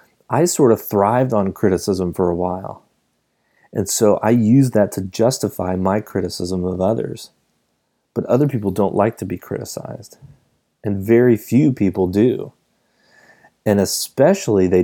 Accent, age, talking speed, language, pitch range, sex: American, 30-49, 145 wpm, English, 90-110 Hz, male